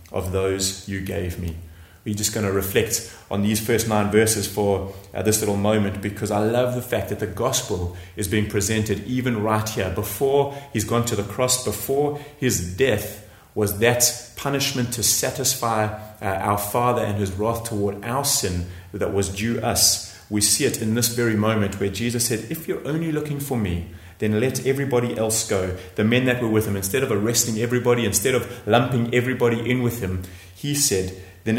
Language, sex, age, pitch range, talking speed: English, male, 30-49, 95-120 Hz, 195 wpm